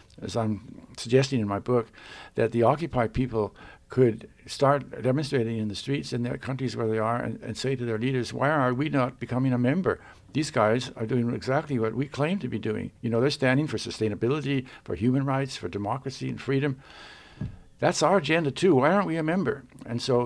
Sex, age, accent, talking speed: male, 60-79, American, 205 wpm